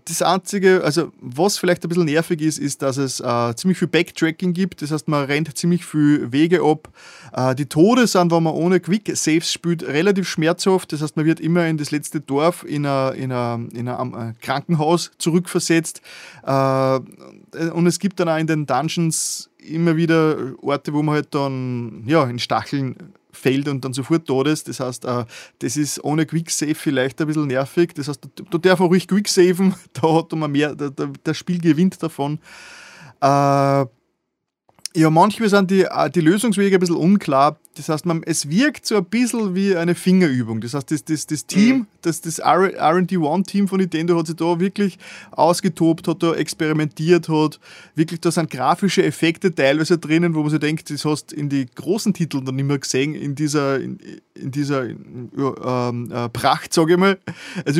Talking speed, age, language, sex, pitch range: 185 wpm, 20-39, German, male, 145-180 Hz